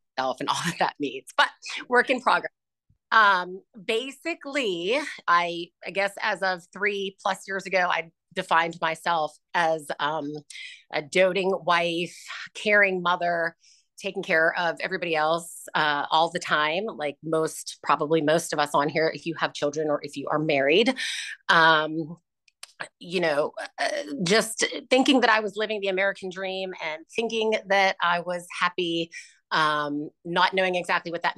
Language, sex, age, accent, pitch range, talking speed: English, female, 30-49, American, 165-210 Hz, 155 wpm